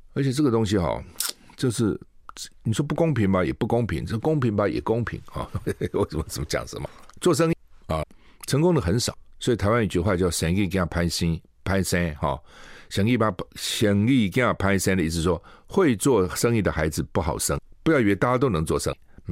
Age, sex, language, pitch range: 60-79, male, Chinese, 85-115 Hz